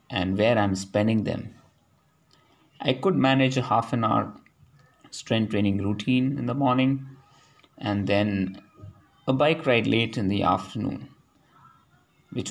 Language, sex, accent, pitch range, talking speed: English, male, Indian, 105-135 Hz, 135 wpm